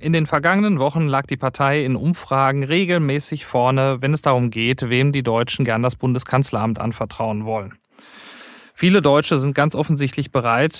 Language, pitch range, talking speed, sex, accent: German, 120-155 Hz, 160 wpm, male, German